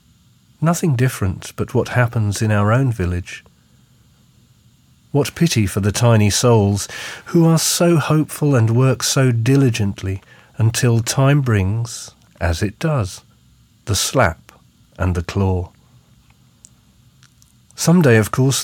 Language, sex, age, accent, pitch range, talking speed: English, male, 40-59, British, 100-130 Hz, 120 wpm